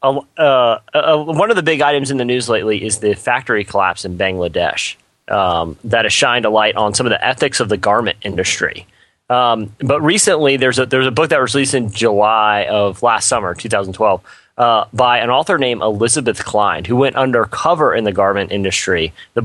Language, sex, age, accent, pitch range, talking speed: English, male, 30-49, American, 105-130 Hz, 200 wpm